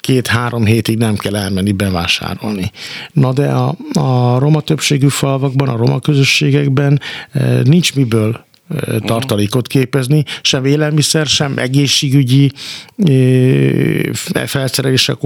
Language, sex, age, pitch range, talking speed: Hungarian, male, 50-69, 120-150 Hz, 100 wpm